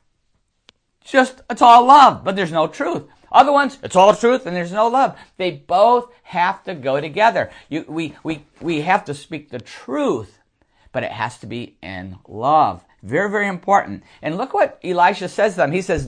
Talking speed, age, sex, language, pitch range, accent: 190 wpm, 50-69, male, English, 170-255 Hz, American